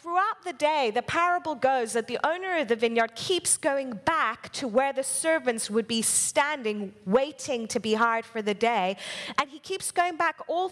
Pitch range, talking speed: 230-335 Hz, 195 wpm